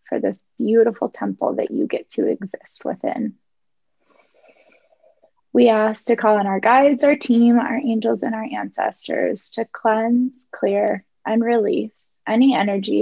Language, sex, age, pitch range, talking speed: English, female, 20-39, 205-240 Hz, 145 wpm